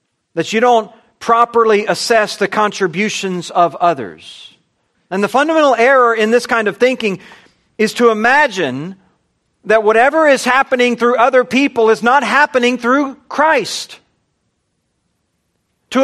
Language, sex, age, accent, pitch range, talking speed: English, male, 40-59, American, 215-270 Hz, 125 wpm